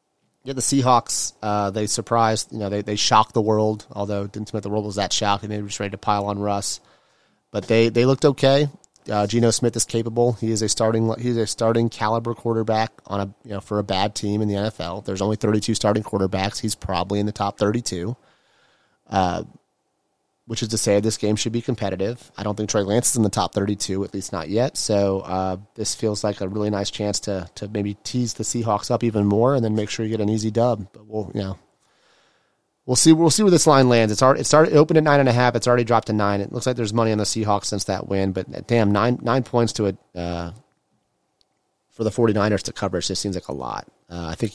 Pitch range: 100-120 Hz